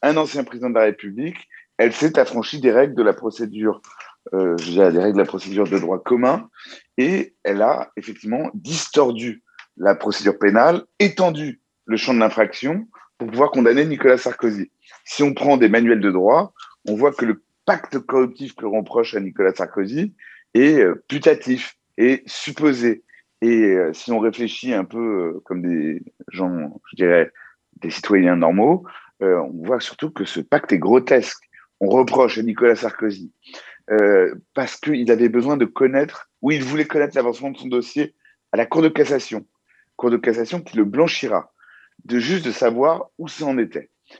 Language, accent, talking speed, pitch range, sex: Italian, French, 170 wpm, 110-145 Hz, male